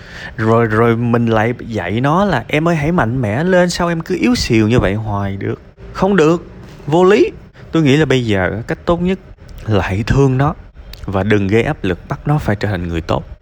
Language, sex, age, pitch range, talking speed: Vietnamese, male, 20-39, 95-140 Hz, 220 wpm